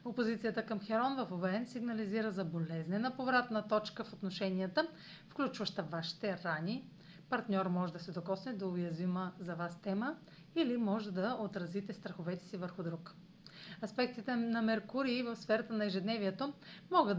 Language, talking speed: Bulgarian, 145 wpm